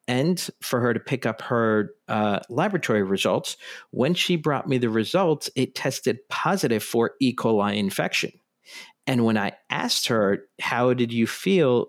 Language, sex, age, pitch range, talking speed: English, male, 50-69, 110-140 Hz, 160 wpm